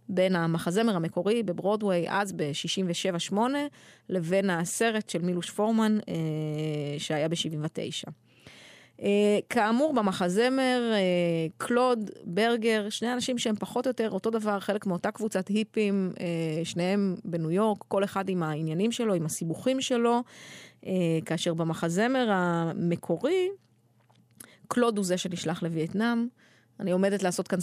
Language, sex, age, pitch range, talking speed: Hebrew, female, 30-49, 170-215 Hz, 125 wpm